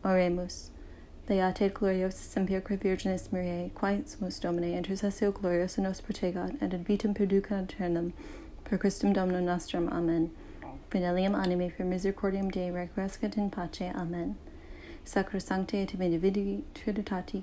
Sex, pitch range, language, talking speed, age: female, 180-200 Hz, English, 120 wpm, 30-49